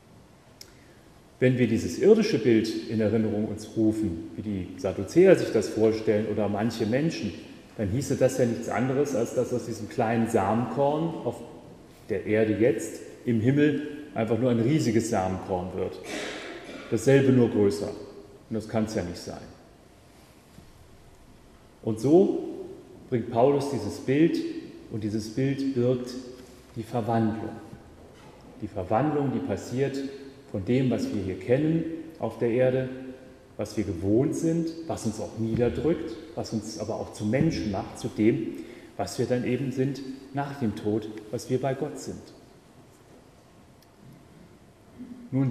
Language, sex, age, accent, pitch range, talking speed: German, male, 30-49, German, 110-135 Hz, 140 wpm